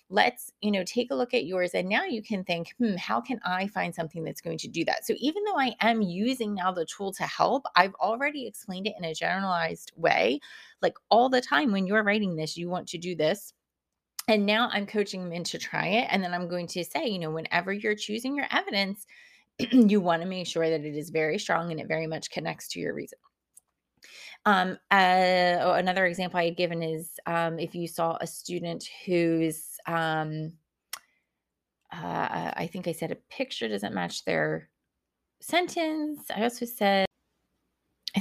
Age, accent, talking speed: 30-49, American, 200 wpm